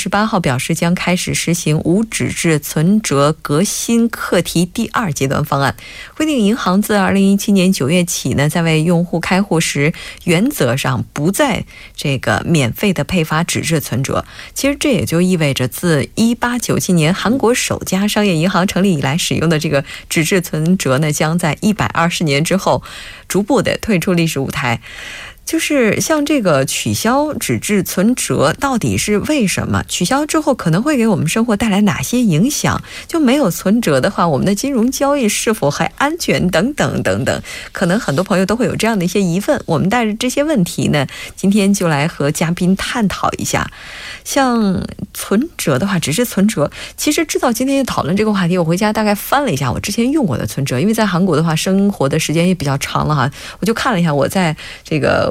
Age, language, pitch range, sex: 20-39, Korean, 160-220 Hz, female